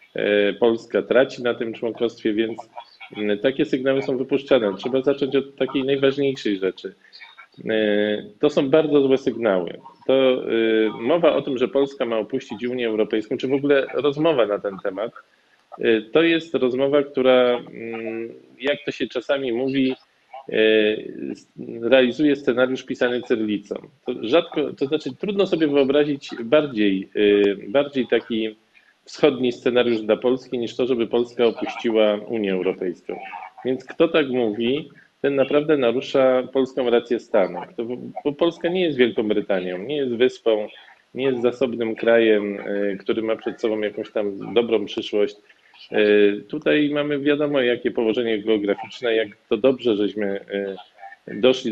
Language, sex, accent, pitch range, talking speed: Polish, male, native, 110-135 Hz, 130 wpm